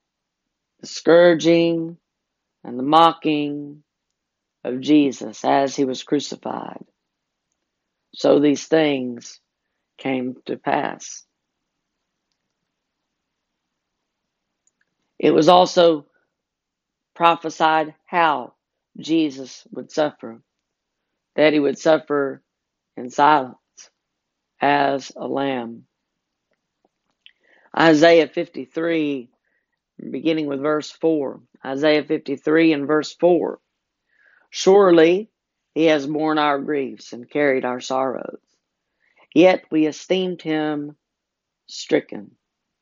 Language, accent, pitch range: English, American, 140-165 Hz